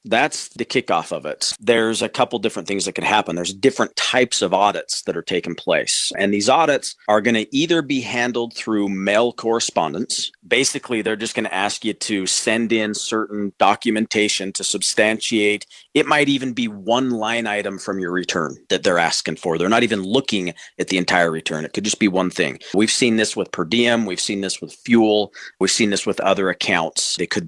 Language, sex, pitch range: English, male, 100-120 Hz